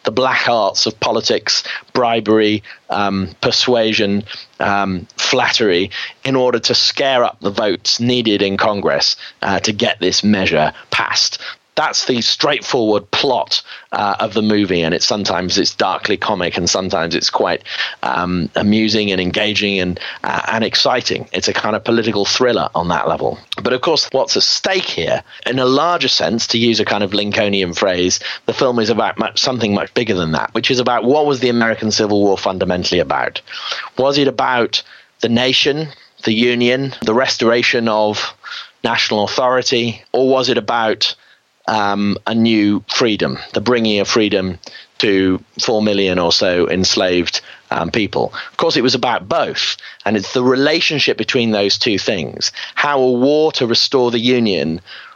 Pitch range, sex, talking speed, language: 100-125 Hz, male, 165 wpm, English